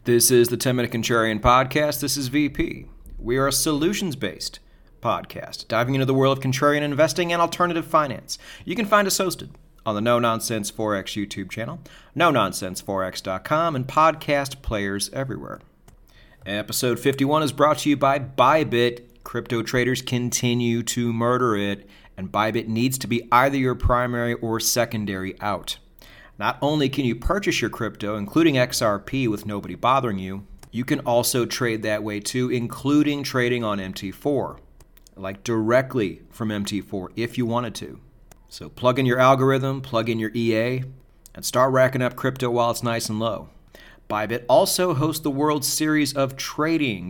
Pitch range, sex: 110-135 Hz, male